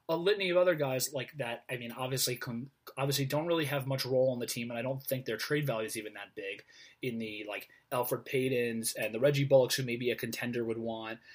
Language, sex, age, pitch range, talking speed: English, male, 20-39, 115-155 Hz, 240 wpm